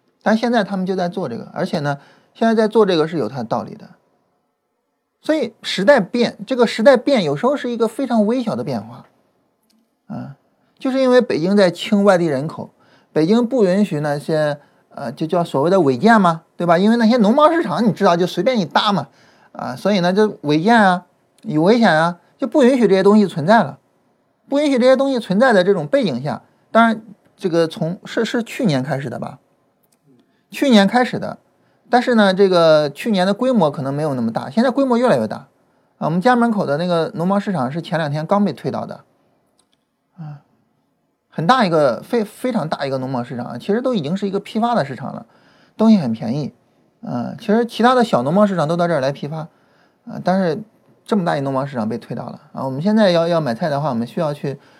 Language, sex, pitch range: Chinese, male, 160-230 Hz